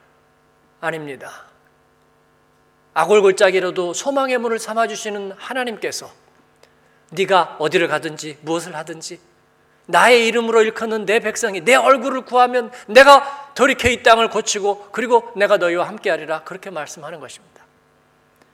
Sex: male